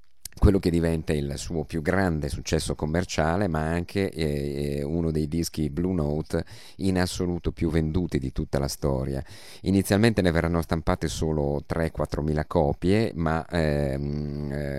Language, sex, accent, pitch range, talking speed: Italian, male, native, 70-90 Hz, 140 wpm